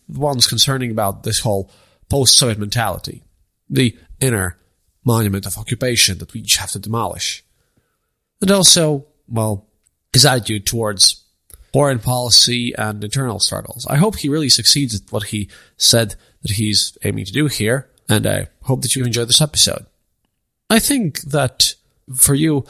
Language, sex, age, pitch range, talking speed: English, male, 30-49, 105-130 Hz, 150 wpm